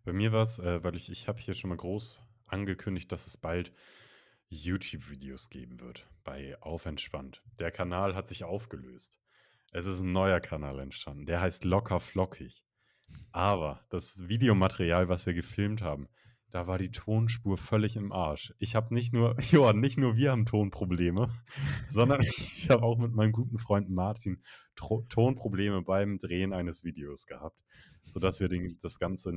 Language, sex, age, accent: German, male, 30-49, German